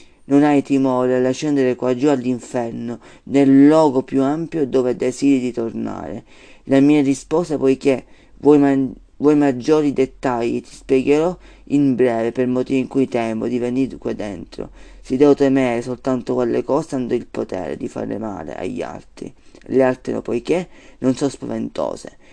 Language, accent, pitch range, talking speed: Italian, native, 125-150 Hz, 155 wpm